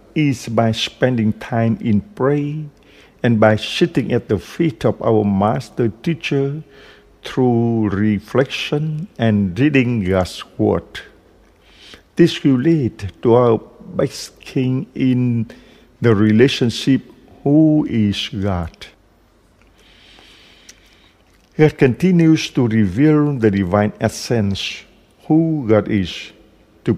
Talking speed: 100 wpm